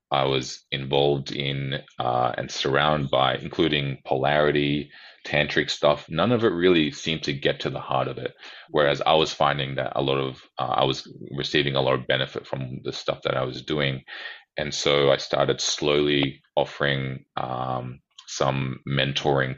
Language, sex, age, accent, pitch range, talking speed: English, male, 30-49, Australian, 65-70 Hz, 170 wpm